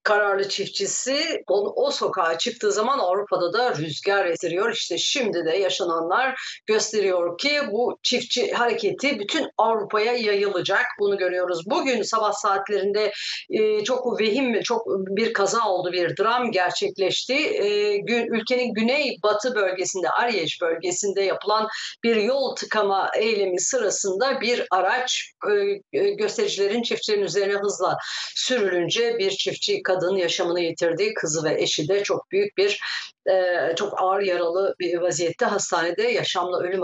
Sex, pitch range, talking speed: female, 185-245 Hz, 135 wpm